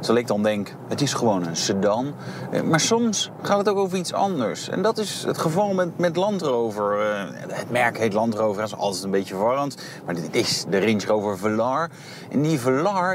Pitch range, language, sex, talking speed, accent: 120-170 Hz, Dutch, male, 220 wpm, Dutch